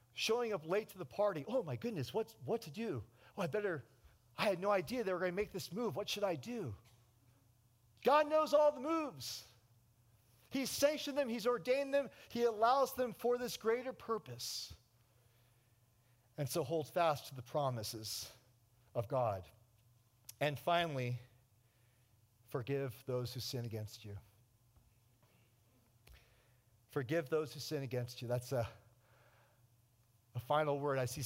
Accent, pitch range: American, 120-155 Hz